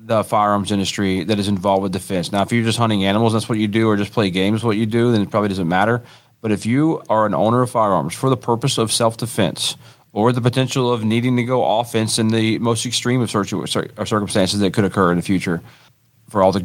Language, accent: English, American